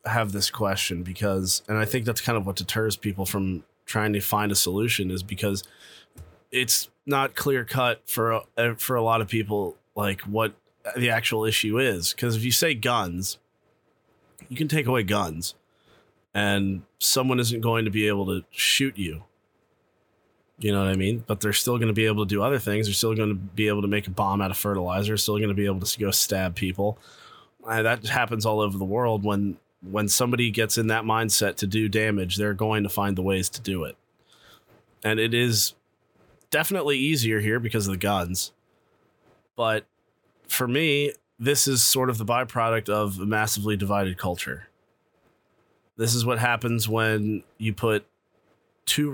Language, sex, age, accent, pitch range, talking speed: English, male, 30-49, American, 100-115 Hz, 185 wpm